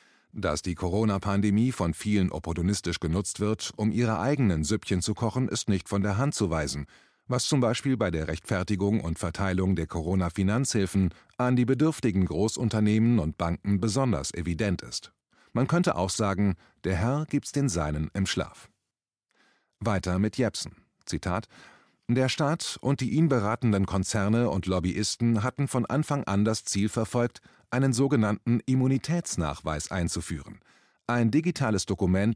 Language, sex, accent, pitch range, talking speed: German, male, German, 95-125 Hz, 145 wpm